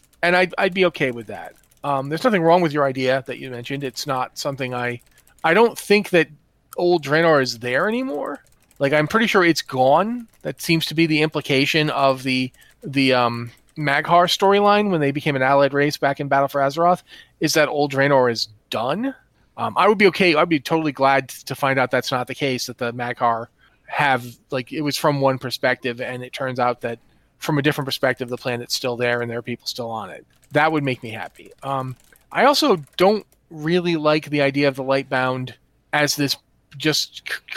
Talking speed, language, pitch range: 210 wpm, English, 130-160 Hz